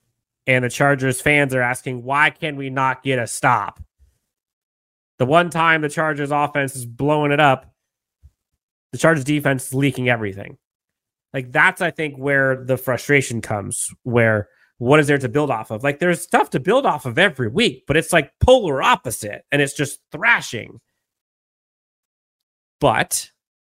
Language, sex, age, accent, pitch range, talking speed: English, male, 30-49, American, 125-185 Hz, 165 wpm